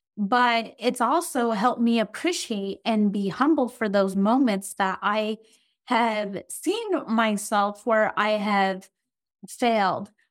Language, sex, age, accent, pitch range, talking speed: English, female, 20-39, American, 205-240 Hz, 120 wpm